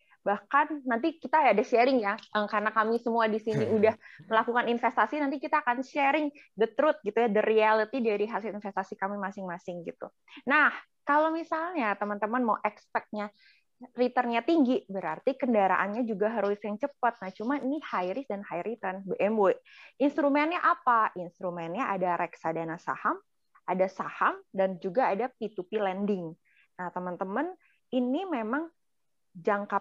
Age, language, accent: 20-39, Indonesian, native